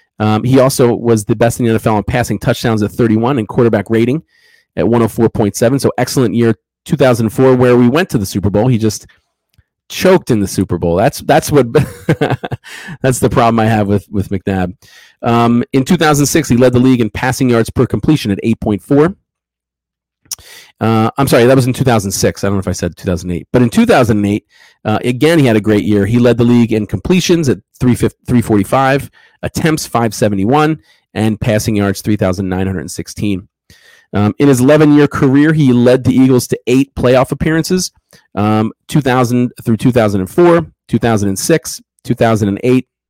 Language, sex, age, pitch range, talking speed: English, male, 40-59, 105-135 Hz, 165 wpm